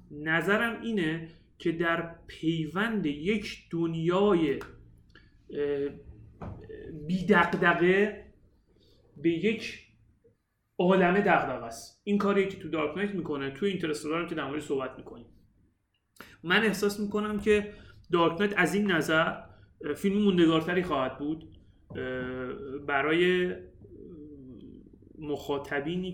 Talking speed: 90 wpm